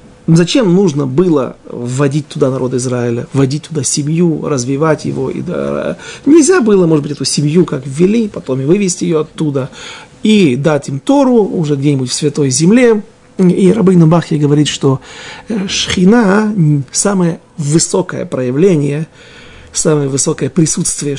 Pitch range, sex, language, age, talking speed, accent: 145-185 Hz, male, Russian, 40-59, 135 wpm, native